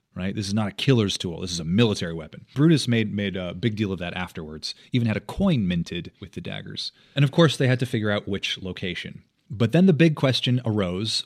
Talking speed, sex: 240 wpm, male